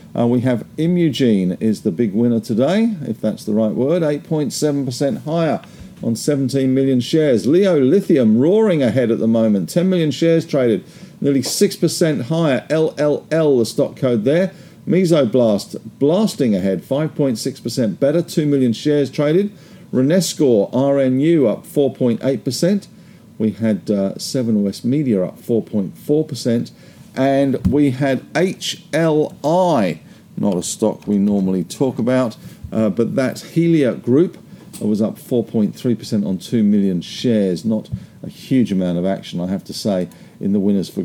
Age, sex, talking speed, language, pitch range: 50-69, male, 140 wpm, English, 115-165 Hz